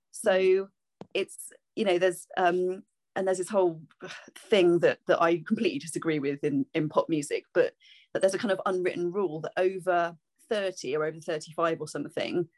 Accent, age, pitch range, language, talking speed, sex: British, 30-49, 170-205 Hz, English, 175 wpm, female